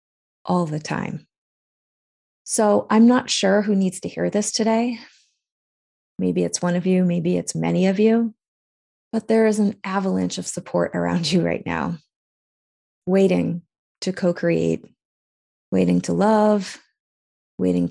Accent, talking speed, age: American, 135 wpm, 30-49